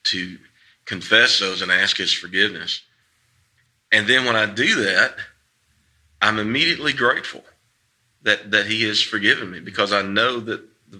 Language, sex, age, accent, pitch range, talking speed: English, male, 40-59, American, 100-115 Hz, 145 wpm